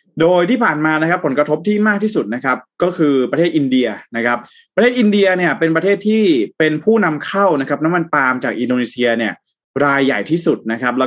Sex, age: male, 20-39